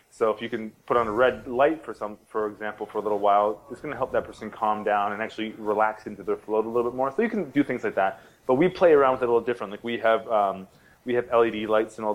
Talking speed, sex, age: 300 wpm, male, 20-39